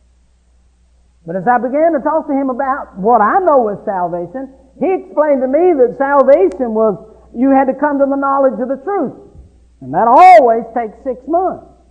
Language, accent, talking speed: English, American, 185 wpm